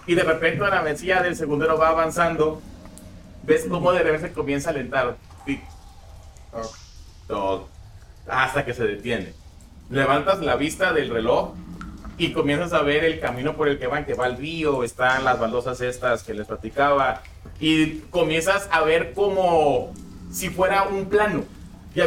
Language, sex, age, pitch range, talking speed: Spanish, male, 30-49, 140-190 Hz, 165 wpm